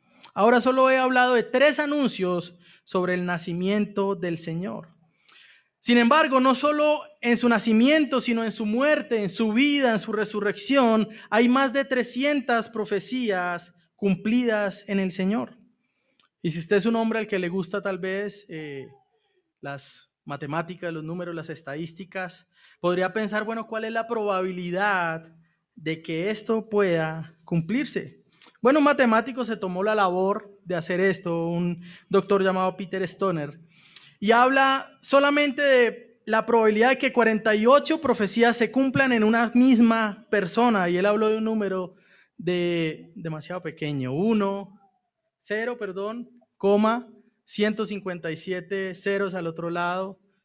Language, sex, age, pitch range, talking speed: Spanish, male, 30-49, 175-235 Hz, 140 wpm